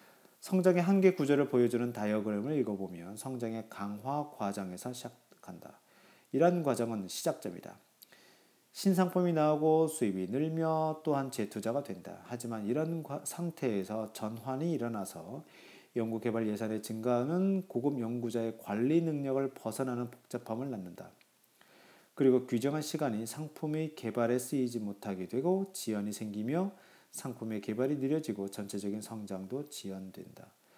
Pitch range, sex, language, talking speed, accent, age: 110-150 Hz, male, English, 100 wpm, Korean, 40-59